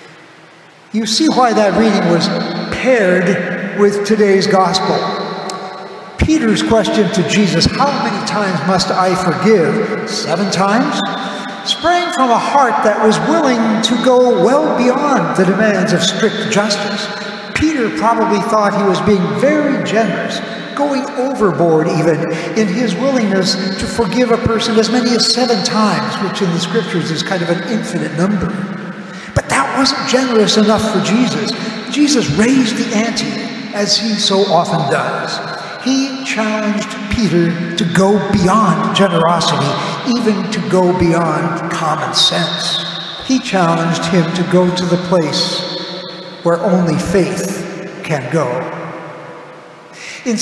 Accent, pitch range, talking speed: American, 185-225 Hz, 135 wpm